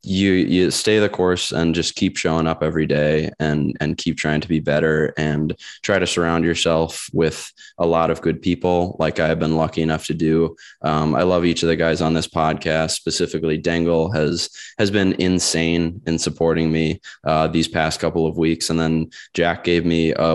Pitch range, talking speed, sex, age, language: 80-85 Hz, 205 wpm, male, 20-39, English